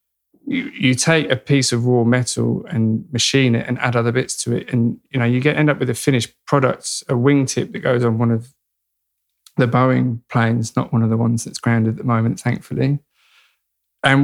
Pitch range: 120-135 Hz